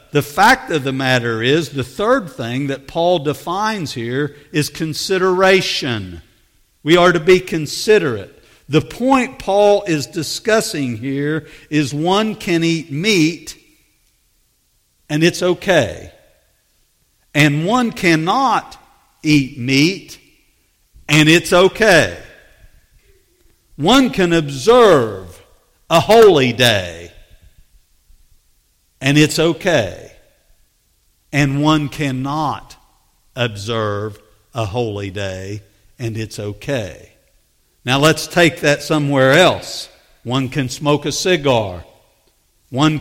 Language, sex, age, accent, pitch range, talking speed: English, male, 50-69, American, 115-170 Hz, 100 wpm